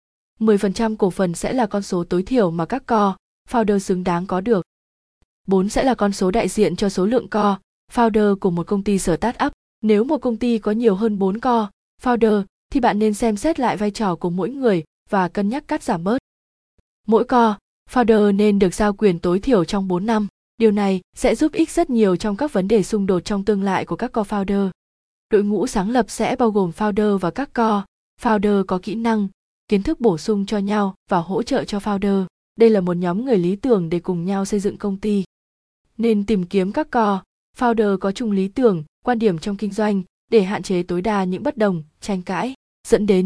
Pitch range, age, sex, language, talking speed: 190-225 Hz, 20-39, female, Vietnamese, 220 wpm